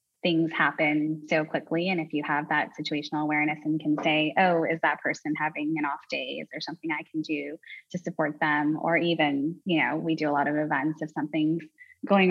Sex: female